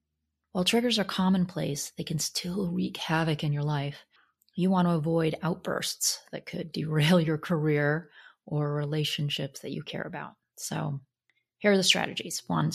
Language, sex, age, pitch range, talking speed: English, female, 30-49, 155-190 Hz, 160 wpm